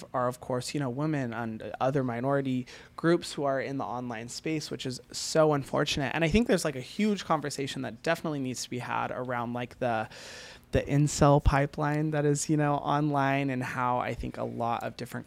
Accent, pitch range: American, 120-150 Hz